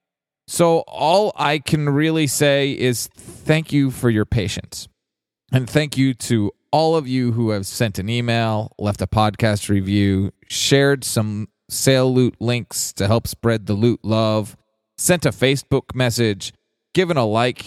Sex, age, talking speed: male, 30-49, 155 wpm